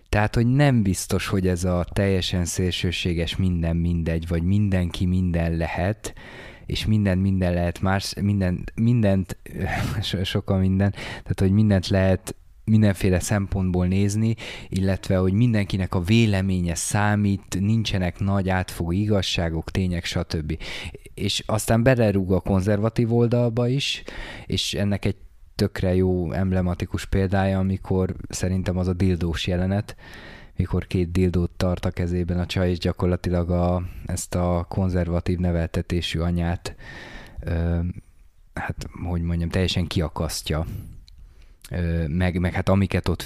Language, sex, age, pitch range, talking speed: Hungarian, male, 20-39, 85-100 Hz, 125 wpm